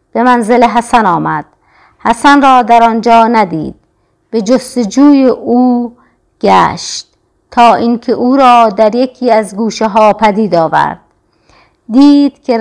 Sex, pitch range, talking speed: female, 220-255 Hz, 125 wpm